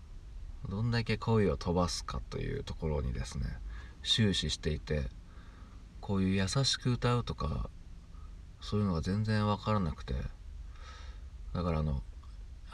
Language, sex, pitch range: Japanese, male, 80-105 Hz